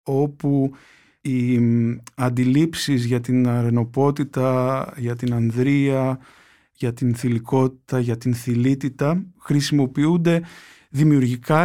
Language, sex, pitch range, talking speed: Greek, male, 120-145 Hz, 90 wpm